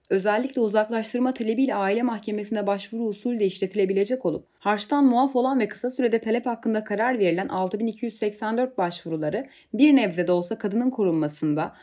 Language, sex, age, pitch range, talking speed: Turkish, female, 30-49, 185-250 Hz, 135 wpm